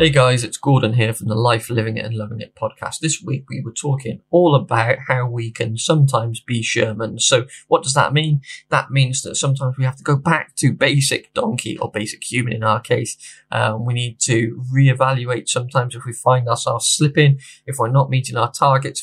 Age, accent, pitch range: 20-39, British, 115-135 Hz